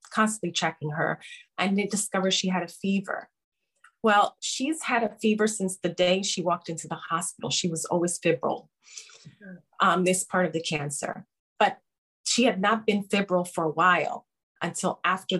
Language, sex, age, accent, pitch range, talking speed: English, female, 30-49, American, 175-215 Hz, 170 wpm